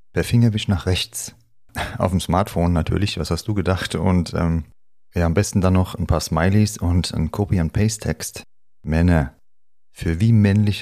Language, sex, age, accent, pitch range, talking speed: German, male, 30-49, German, 85-105 Hz, 160 wpm